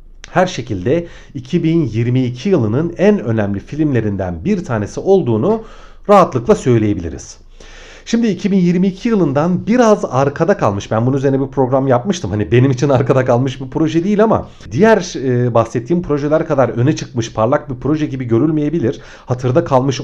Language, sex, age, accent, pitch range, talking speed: Turkish, male, 40-59, native, 110-170 Hz, 140 wpm